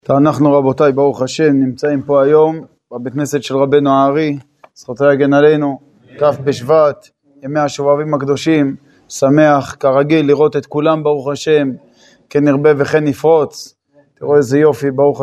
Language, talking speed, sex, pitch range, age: Hebrew, 140 wpm, male, 140-165 Hz, 20-39